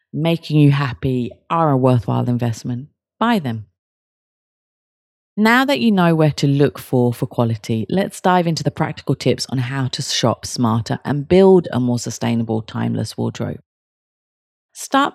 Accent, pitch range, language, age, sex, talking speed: British, 125-165 Hz, English, 30-49, female, 150 wpm